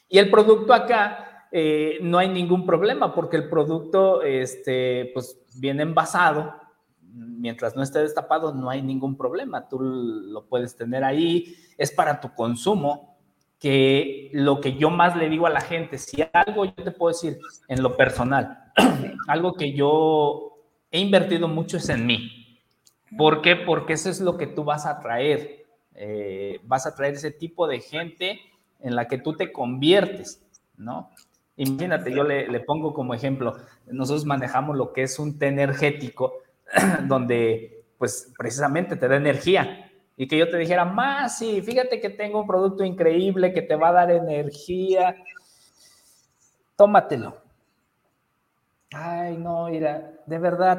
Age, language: 50-69, Spanish